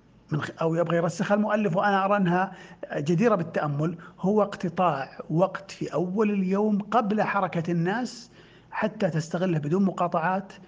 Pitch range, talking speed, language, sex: 155-200 Hz, 120 wpm, Arabic, male